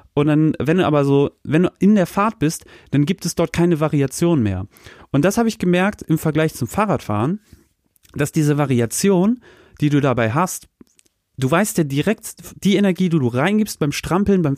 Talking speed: 195 wpm